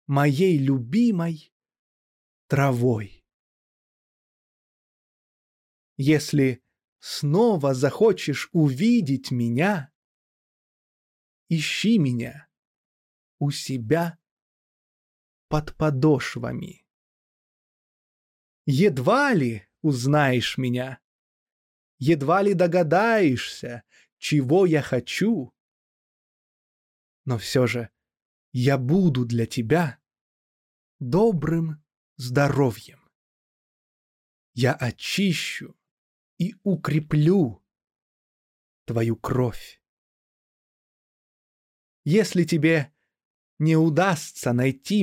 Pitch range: 120-170 Hz